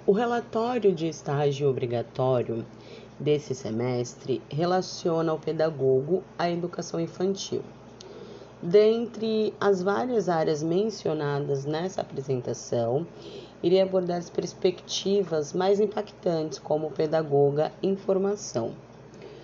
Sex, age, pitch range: female, 30-49, 155-205 Hz